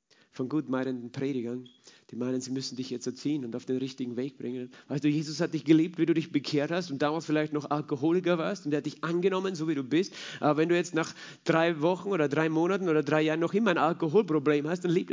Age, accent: 40-59, German